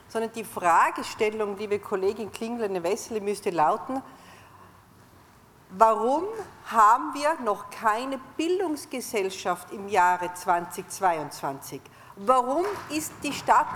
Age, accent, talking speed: 50-69, Austrian, 95 wpm